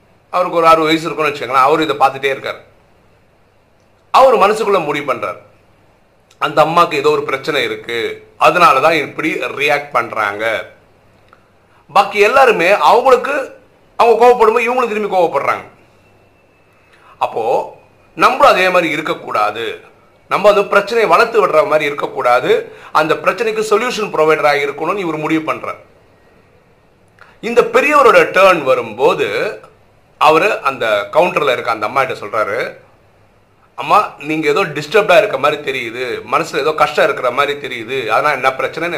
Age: 50-69